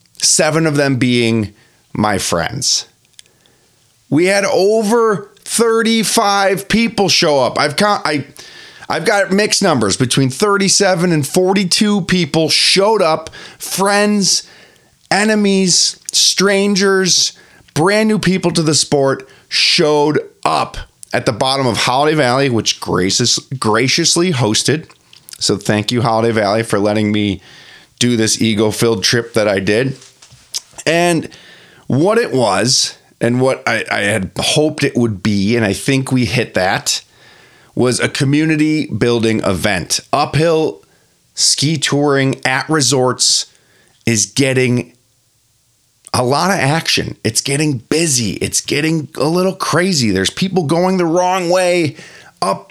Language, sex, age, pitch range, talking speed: English, male, 30-49, 120-185 Hz, 125 wpm